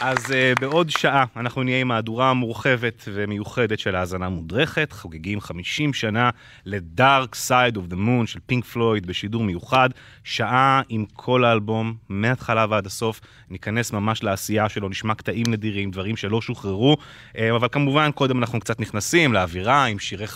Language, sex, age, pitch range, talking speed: English, male, 30-49, 105-130 Hz, 145 wpm